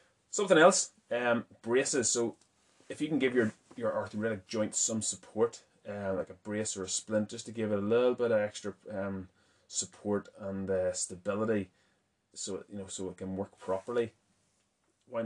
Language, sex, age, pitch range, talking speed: English, male, 20-39, 95-105 Hz, 180 wpm